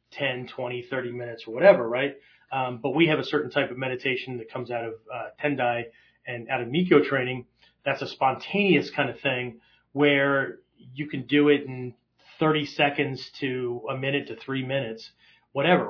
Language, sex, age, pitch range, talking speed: English, male, 30-49, 125-150 Hz, 180 wpm